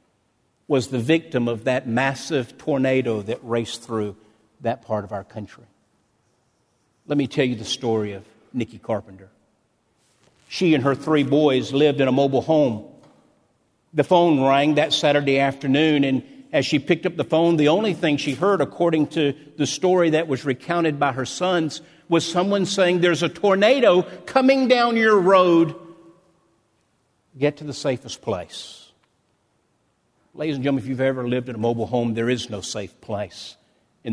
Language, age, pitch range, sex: English, 50-69, 125-190 Hz, male